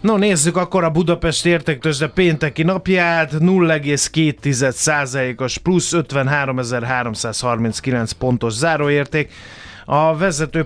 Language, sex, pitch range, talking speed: Hungarian, male, 125-155 Hz, 90 wpm